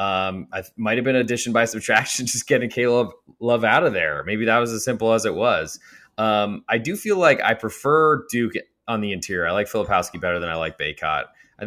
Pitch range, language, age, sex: 100-125 Hz, English, 20-39, male